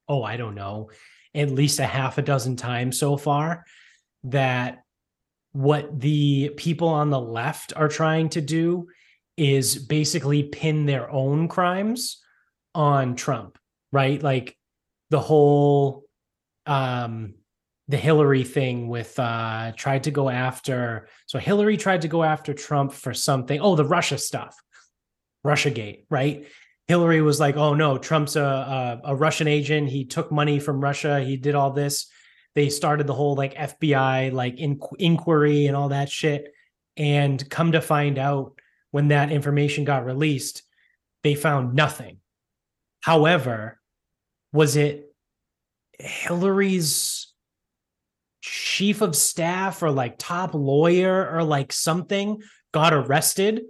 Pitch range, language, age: 135-155 Hz, English, 20-39